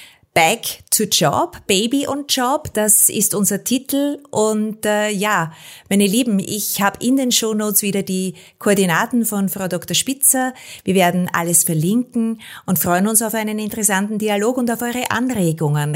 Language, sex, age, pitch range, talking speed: German, female, 30-49, 185-220 Hz, 160 wpm